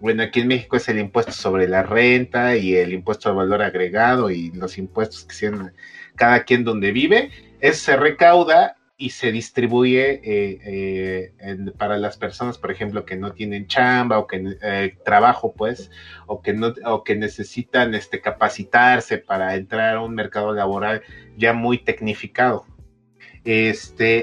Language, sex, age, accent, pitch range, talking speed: Spanish, male, 30-49, Mexican, 105-130 Hz, 165 wpm